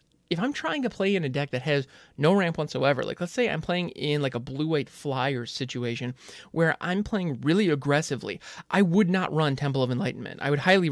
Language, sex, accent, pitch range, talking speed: English, male, American, 135-180 Hz, 215 wpm